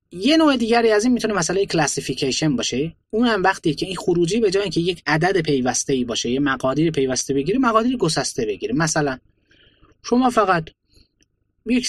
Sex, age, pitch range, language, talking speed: male, 20-39, 145-205 Hz, Persian, 170 wpm